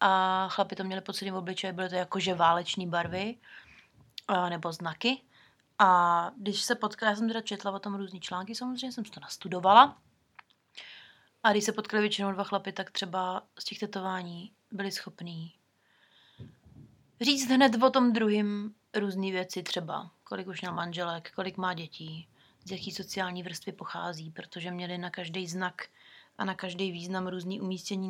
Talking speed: 160 wpm